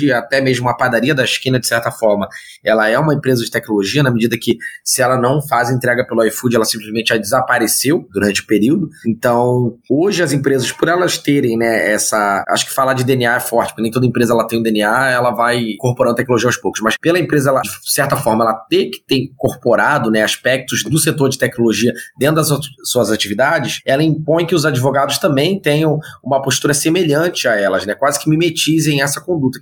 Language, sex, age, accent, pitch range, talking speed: Portuguese, male, 20-39, Brazilian, 120-145 Hz, 210 wpm